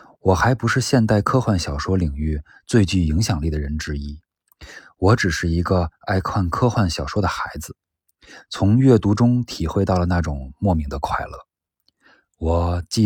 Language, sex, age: Chinese, male, 20-39